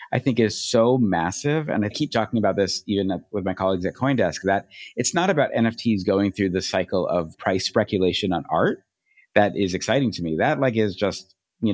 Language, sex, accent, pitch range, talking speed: English, male, American, 95-115 Hz, 210 wpm